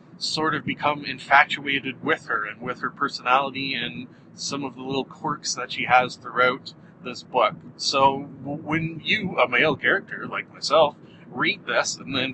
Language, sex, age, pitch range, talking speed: English, male, 40-59, 135-170 Hz, 170 wpm